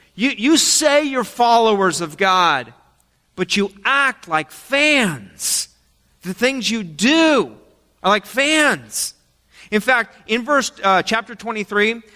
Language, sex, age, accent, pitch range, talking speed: English, male, 40-59, American, 165-230 Hz, 130 wpm